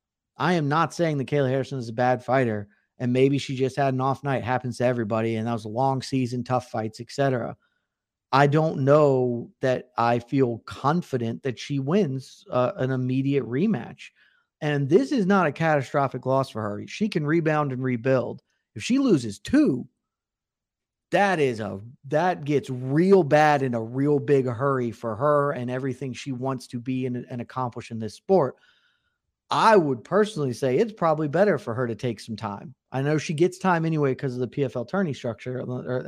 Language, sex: English, male